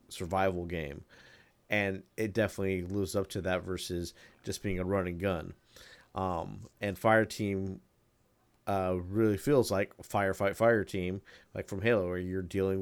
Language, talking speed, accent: English, 150 wpm, American